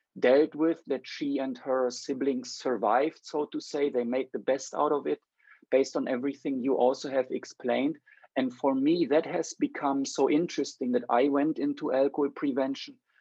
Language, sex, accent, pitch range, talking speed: English, male, German, 130-160 Hz, 175 wpm